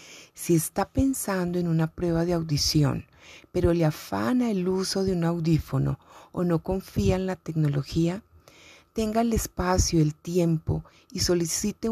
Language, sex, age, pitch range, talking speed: Spanish, female, 30-49, 155-190 Hz, 145 wpm